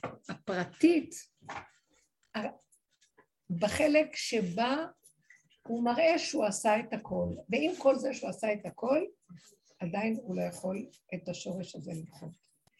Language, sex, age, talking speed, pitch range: Hebrew, female, 60-79, 115 wpm, 185-245 Hz